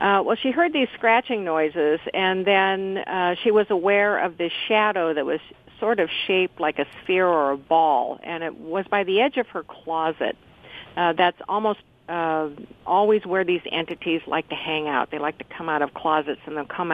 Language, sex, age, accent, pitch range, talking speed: English, female, 50-69, American, 155-195 Hz, 205 wpm